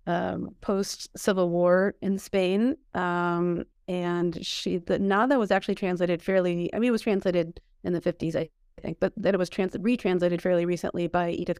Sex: female